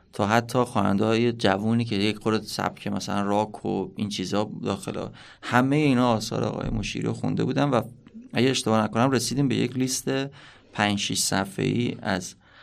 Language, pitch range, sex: Persian, 105-120 Hz, male